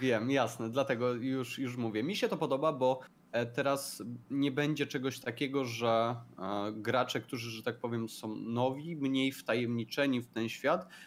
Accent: native